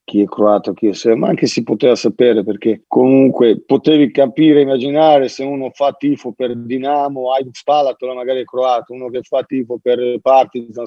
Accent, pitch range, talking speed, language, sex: native, 110-125 Hz, 175 wpm, Italian, male